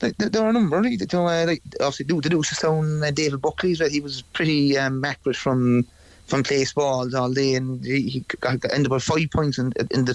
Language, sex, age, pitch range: English, male, 30-49, 130-150 Hz